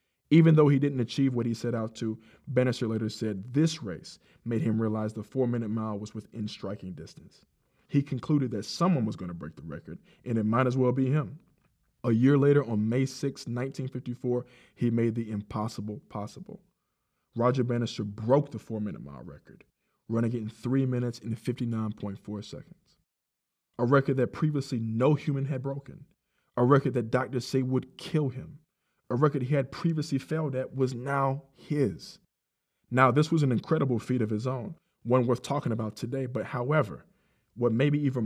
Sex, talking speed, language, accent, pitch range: male, 180 wpm, English, American, 115-145 Hz